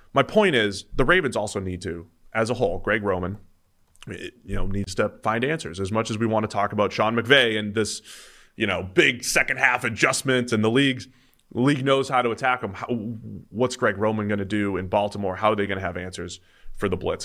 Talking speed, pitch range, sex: 225 wpm, 95-125 Hz, male